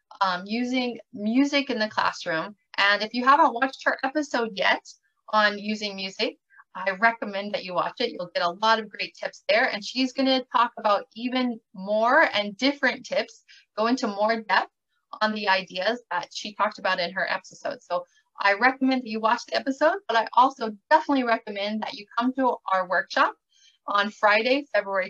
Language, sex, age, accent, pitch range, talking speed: English, female, 30-49, American, 205-260 Hz, 185 wpm